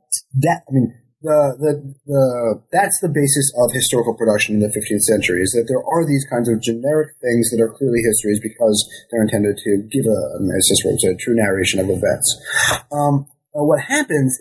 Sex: male